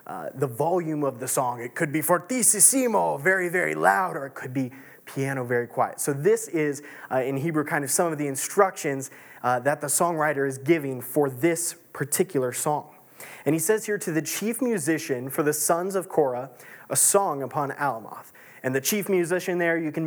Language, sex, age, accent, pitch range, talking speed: English, male, 20-39, American, 140-175 Hz, 195 wpm